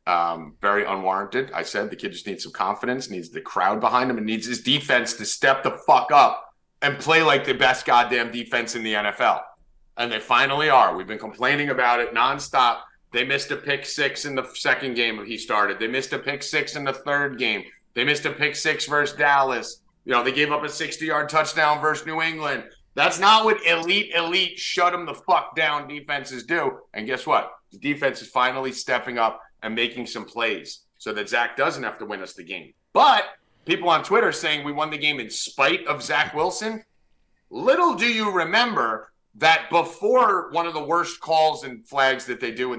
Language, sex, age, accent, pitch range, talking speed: English, male, 30-49, American, 125-170 Hz, 210 wpm